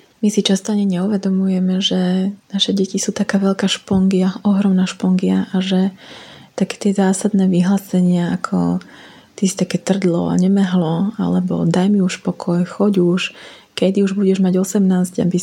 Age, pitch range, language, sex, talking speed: 20-39, 185-195 Hz, Slovak, female, 150 wpm